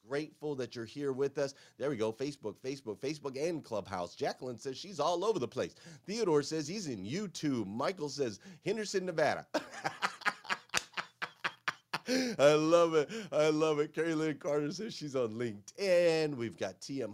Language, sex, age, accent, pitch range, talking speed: English, male, 30-49, American, 115-155 Hz, 160 wpm